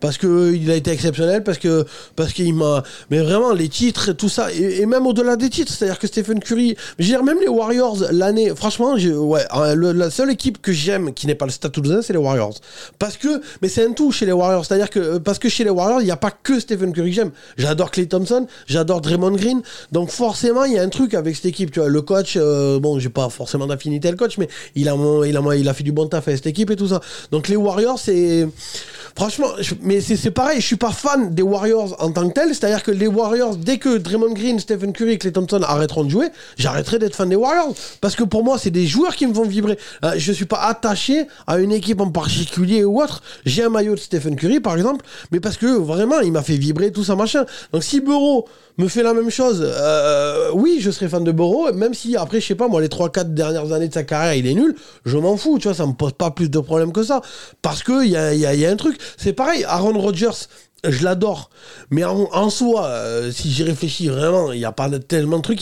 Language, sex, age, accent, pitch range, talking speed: French, male, 20-39, French, 160-230 Hz, 260 wpm